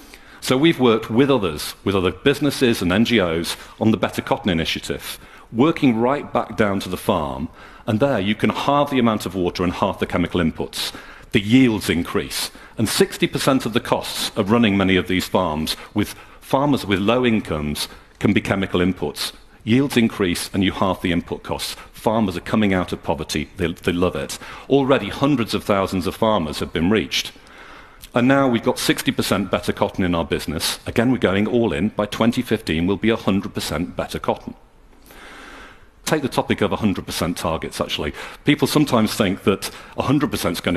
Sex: male